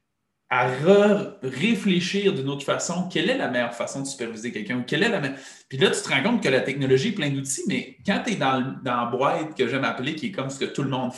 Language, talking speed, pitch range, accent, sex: French, 260 wpm, 130-190 Hz, Canadian, male